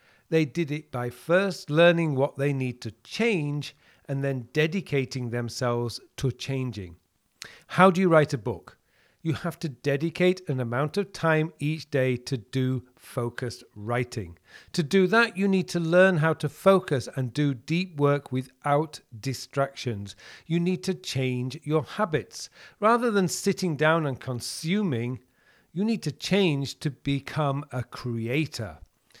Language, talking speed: English, 150 wpm